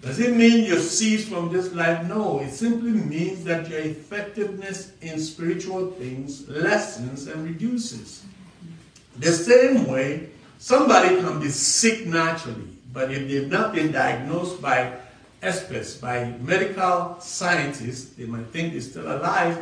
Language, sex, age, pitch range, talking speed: English, male, 60-79, 145-210 Hz, 140 wpm